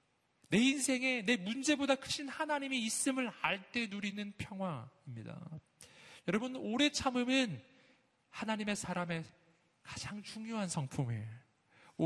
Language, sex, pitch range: Korean, male, 125-195 Hz